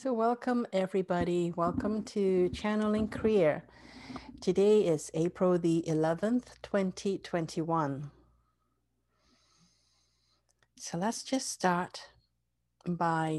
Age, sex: 50-69, female